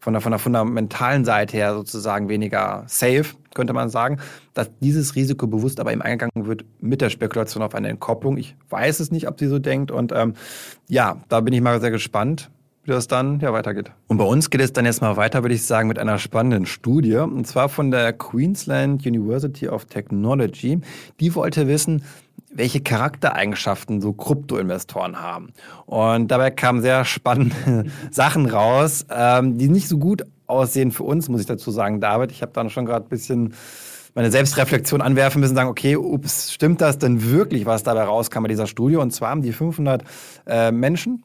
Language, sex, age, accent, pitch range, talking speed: German, male, 20-39, German, 115-140 Hz, 190 wpm